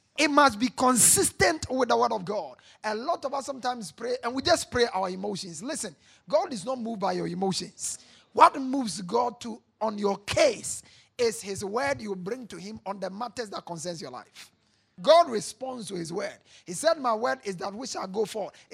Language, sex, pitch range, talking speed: English, male, 190-265 Hz, 210 wpm